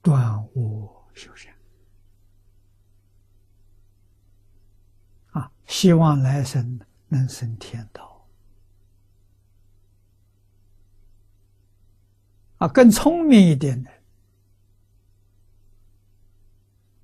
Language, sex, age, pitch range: Chinese, male, 60-79, 100-120 Hz